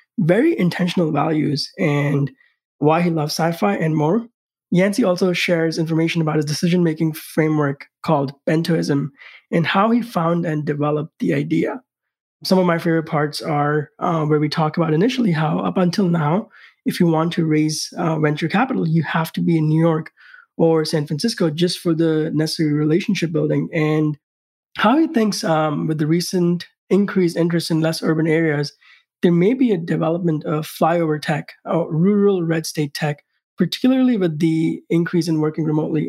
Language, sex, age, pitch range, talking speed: English, male, 20-39, 155-175 Hz, 170 wpm